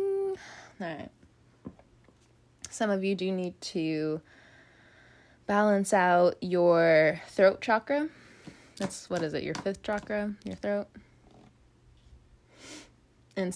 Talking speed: 95 wpm